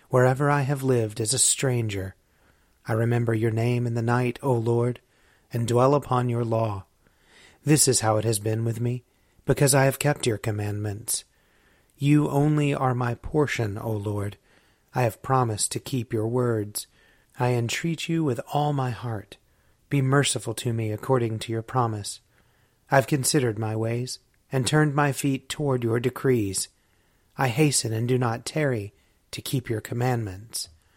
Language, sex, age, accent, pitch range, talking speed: English, male, 30-49, American, 110-135 Hz, 165 wpm